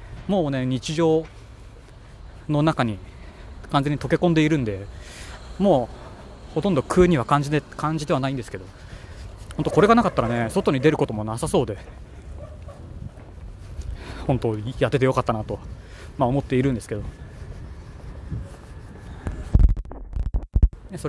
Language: Japanese